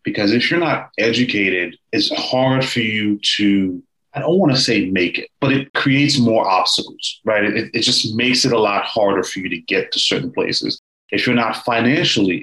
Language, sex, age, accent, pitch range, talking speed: English, male, 30-49, American, 95-125 Hz, 205 wpm